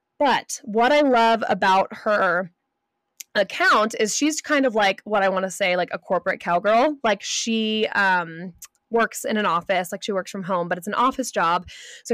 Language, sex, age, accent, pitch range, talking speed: English, female, 20-39, American, 185-230 Hz, 195 wpm